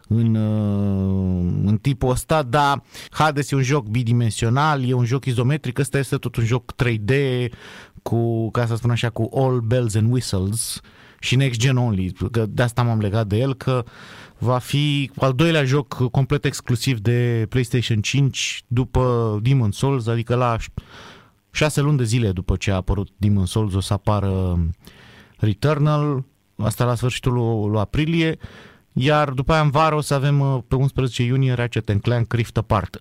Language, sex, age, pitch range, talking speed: Romanian, male, 30-49, 110-140 Hz, 165 wpm